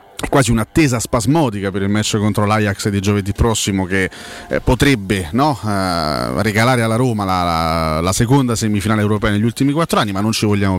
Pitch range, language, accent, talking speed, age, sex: 105-125 Hz, Italian, native, 185 wpm, 30-49, male